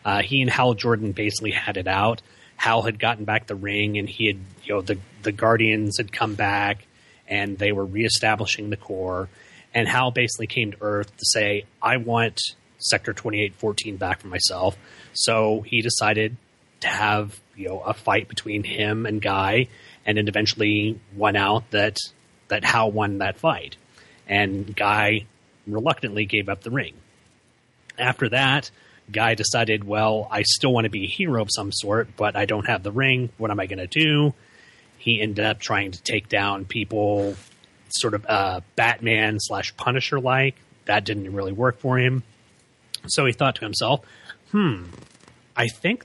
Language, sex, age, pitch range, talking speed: English, male, 30-49, 105-120 Hz, 175 wpm